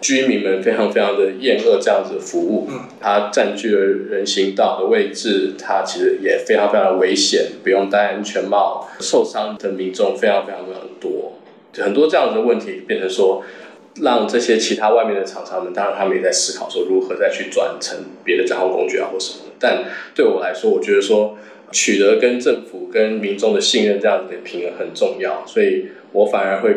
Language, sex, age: Chinese, male, 20-39